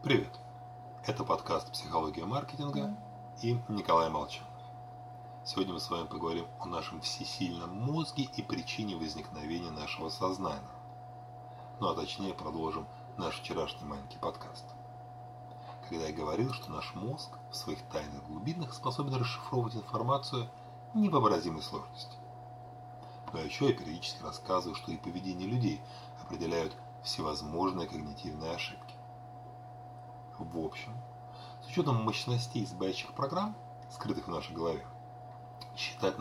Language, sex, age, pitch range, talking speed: Russian, male, 30-49, 105-120 Hz, 115 wpm